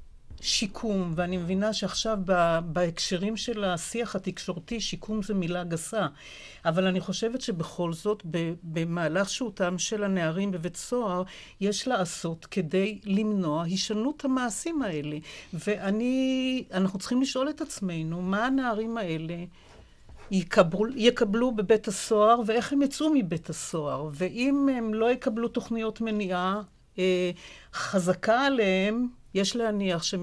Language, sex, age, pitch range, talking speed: Hebrew, female, 60-79, 180-230 Hz, 115 wpm